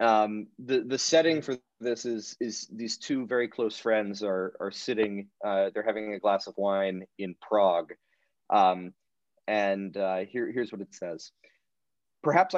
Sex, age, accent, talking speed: male, 30-49, American, 160 wpm